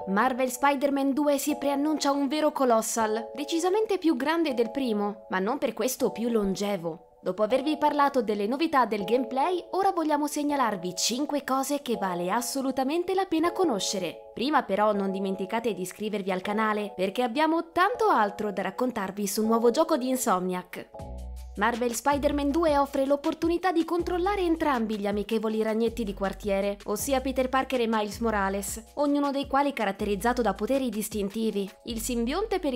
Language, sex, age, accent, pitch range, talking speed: Italian, female, 20-39, native, 215-295 Hz, 155 wpm